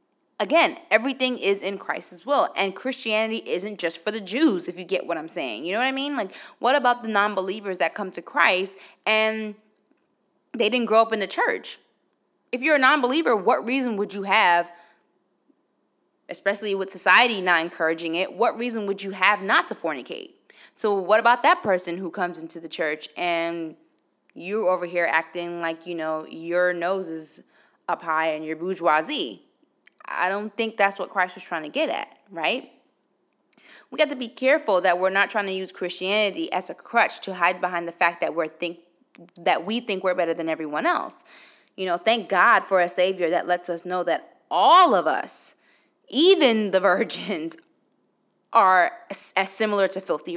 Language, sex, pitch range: English, female, 175-230 Hz